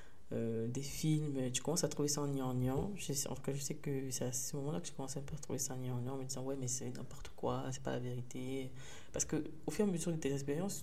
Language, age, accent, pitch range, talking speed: French, 20-39, French, 130-145 Hz, 275 wpm